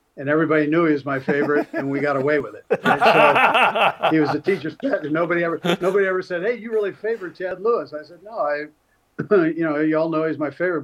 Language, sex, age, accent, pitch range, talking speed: English, male, 50-69, American, 140-165 Hz, 240 wpm